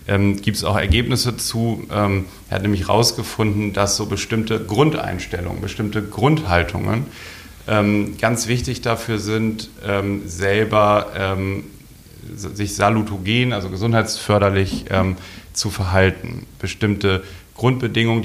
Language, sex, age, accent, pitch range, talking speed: German, male, 40-59, German, 100-115 Hz, 110 wpm